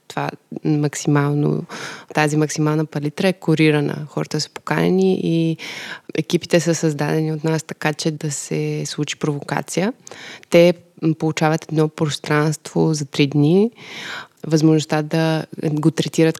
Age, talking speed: 20-39, 115 wpm